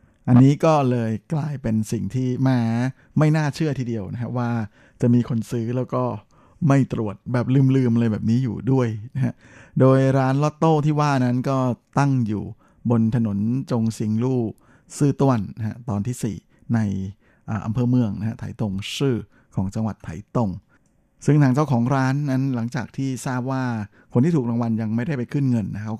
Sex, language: male, Thai